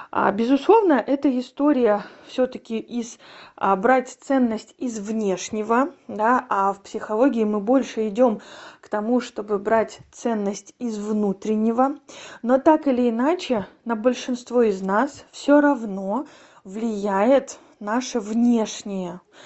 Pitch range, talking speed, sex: 215-275 Hz, 115 wpm, female